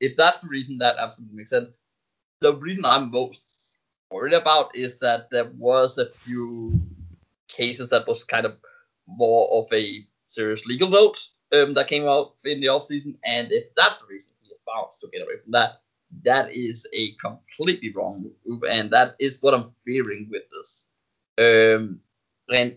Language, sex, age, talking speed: English, male, 20-39, 175 wpm